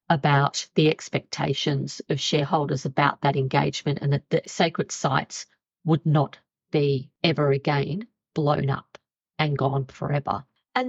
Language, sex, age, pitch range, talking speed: English, female, 50-69, 145-180 Hz, 130 wpm